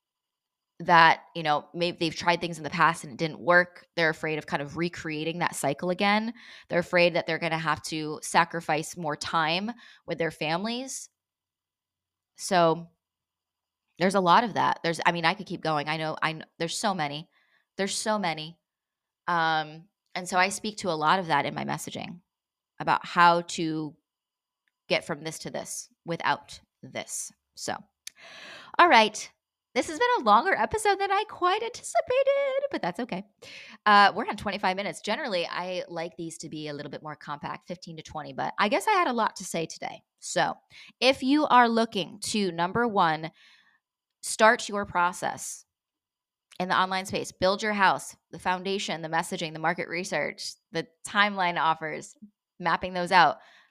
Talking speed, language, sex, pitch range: 175 wpm, English, female, 160-205 Hz